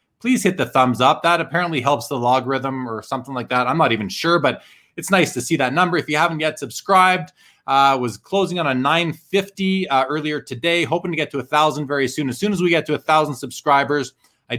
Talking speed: 235 wpm